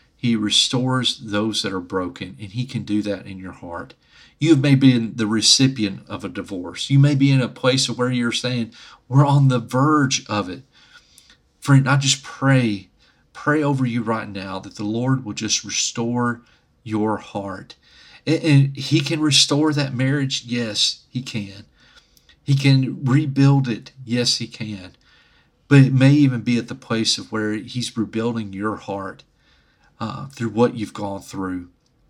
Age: 40-59